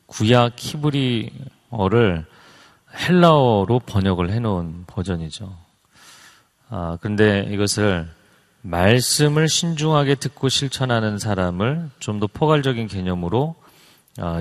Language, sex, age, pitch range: Korean, male, 30-49, 95-130 Hz